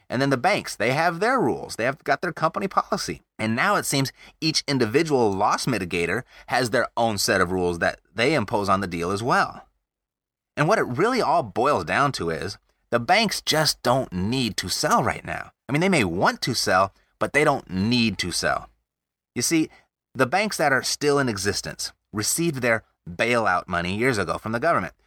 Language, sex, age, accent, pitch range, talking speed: English, male, 30-49, American, 110-170 Hz, 205 wpm